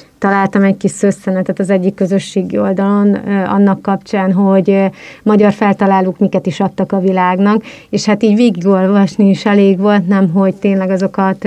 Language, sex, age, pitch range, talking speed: Hungarian, female, 30-49, 190-205 Hz, 155 wpm